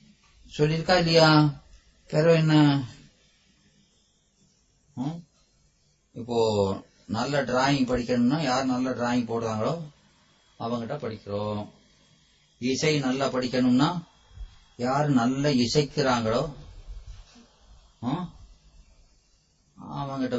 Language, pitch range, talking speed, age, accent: Tamil, 120-155 Hz, 55 wpm, 30-49, native